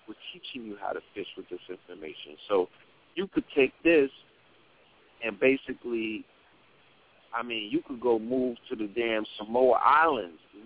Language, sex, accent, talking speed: English, male, American, 150 wpm